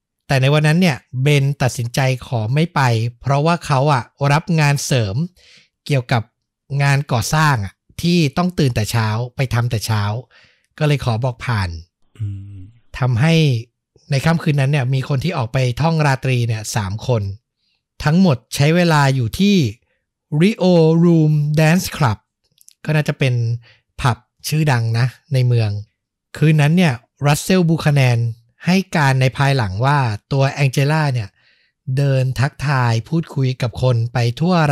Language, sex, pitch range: Thai, male, 120-150 Hz